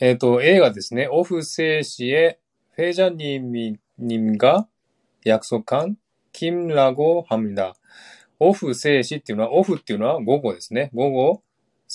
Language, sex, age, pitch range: Japanese, male, 20-39, 115-150 Hz